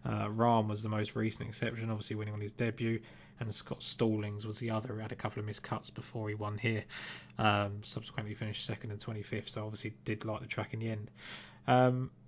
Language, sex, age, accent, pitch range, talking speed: English, male, 20-39, British, 110-125 Hz, 220 wpm